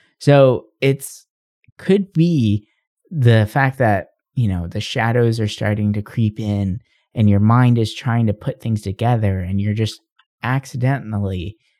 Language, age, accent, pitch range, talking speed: English, 20-39, American, 100-130 Hz, 145 wpm